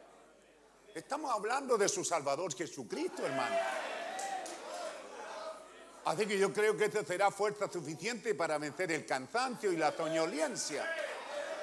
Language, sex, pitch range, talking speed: Spanish, male, 170-280 Hz, 120 wpm